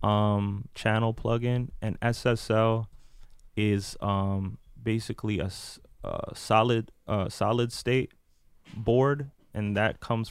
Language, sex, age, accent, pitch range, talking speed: English, male, 20-39, American, 95-110 Hz, 105 wpm